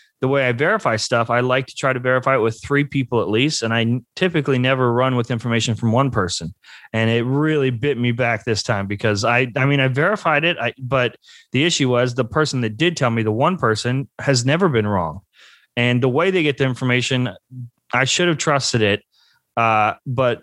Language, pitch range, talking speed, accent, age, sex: English, 120-150 Hz, 215 wpm, American, 30-49, male